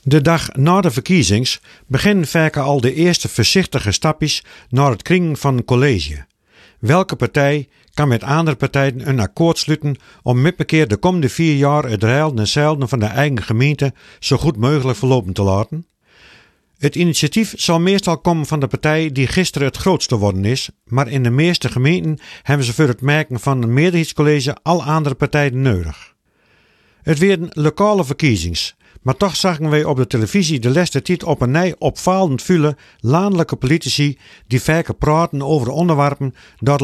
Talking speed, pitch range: 175 wpm, 130-160 Hz